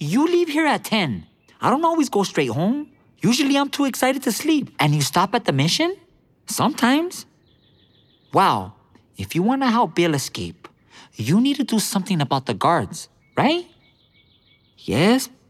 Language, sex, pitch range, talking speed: English, male, 110-175 Hz, 165 wpm